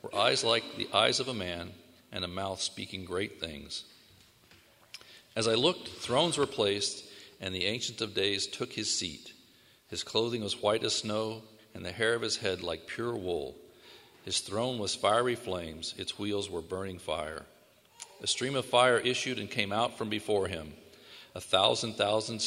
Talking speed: 175 wpm